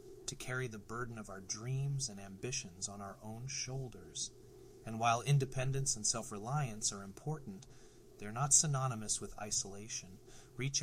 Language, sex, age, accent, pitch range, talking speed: English, male, 30-49, American, 110-130 Hz, 145 wpm